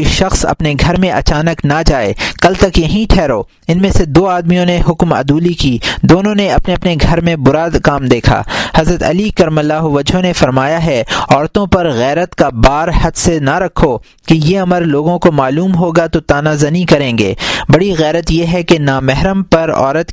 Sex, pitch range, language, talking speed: male, 145-175 Hz, Urdu, 195 wpm